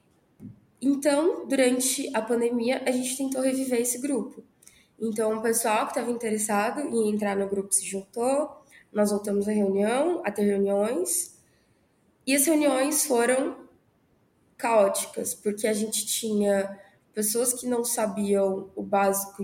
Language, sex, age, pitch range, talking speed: Portuguese, female, 20-39, 210-260 Hz, 135 wpm